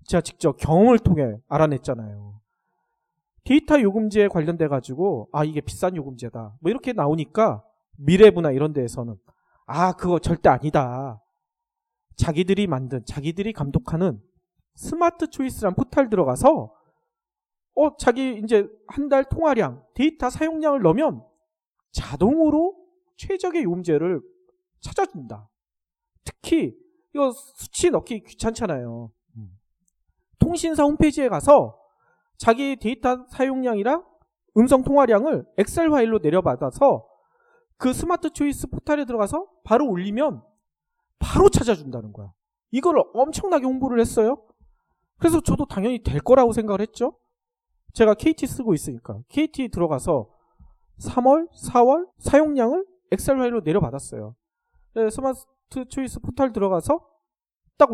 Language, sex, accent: Korean, male, native